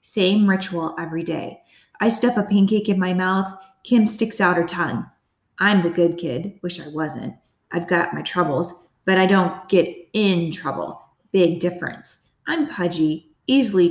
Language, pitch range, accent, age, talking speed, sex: English, 175-200 Hz, American, 20-39, 165 wpm, female